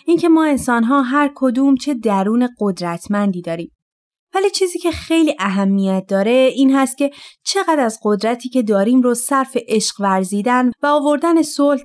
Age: 30-49